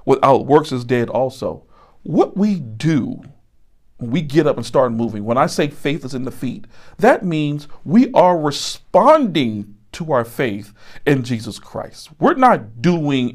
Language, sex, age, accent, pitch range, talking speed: English, male, 50-69, American, 115-160 Hz, 160 wpm